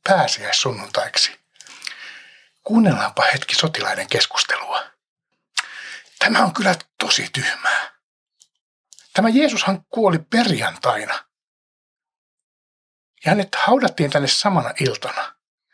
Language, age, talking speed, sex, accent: Finnish, 60-79, 75 wpm, male, native